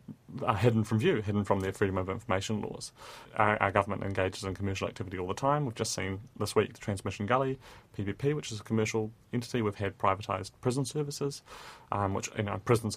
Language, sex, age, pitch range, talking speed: English, male, 30-49, 100-115 Hz, 210 wpm